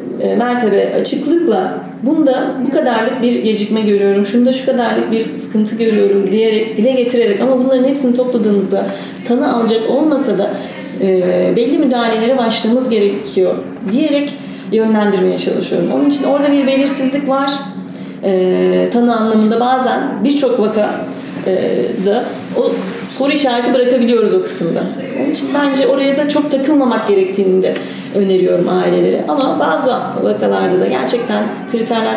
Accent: native